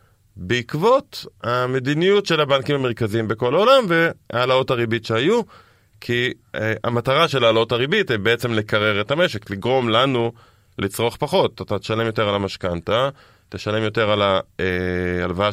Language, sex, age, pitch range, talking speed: Hebrew, male, 20-39, 100-135 Hz, 135 wpm